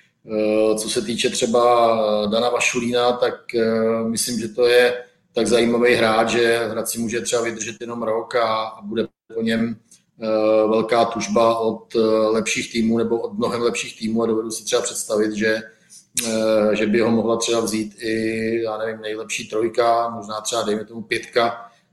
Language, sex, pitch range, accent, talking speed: Czech, male, 110-115 Hz, native, 160 wpm